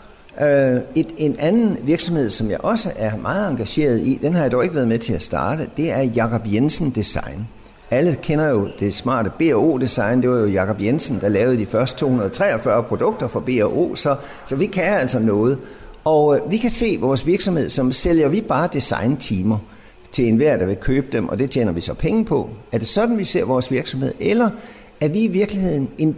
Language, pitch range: Danish, 115-170 Hz